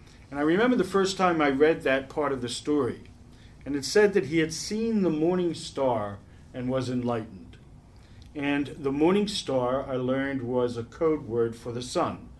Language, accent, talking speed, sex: English, American, 190 wpm, male